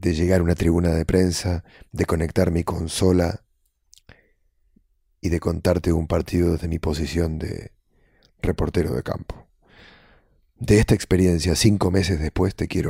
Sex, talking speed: male, 145 wpm